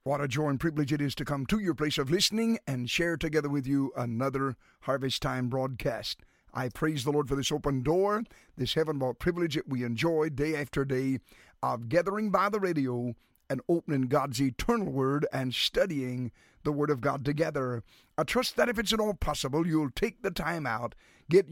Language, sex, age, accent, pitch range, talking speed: English, male, 50-69, American, 135-185 Hz, 200 wpm